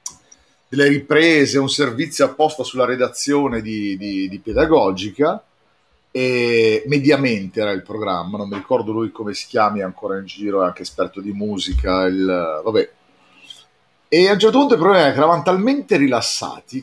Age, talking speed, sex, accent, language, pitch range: 40-59, 160 wpm, male, native, Italian, 105-155 Hz